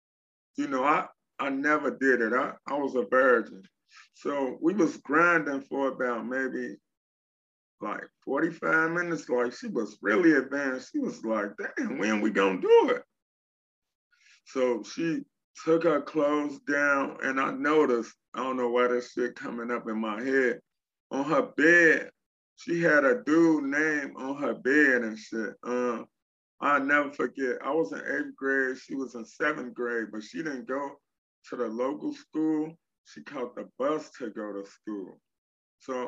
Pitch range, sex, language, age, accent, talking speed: 120-155 Hz, male, English, 30-49, American, 170 wpm